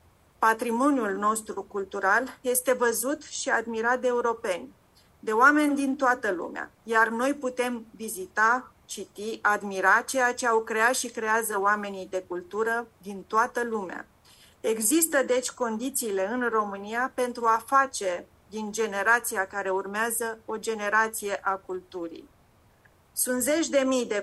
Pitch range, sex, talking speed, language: 200-240 Hz, female, 130 wpm, English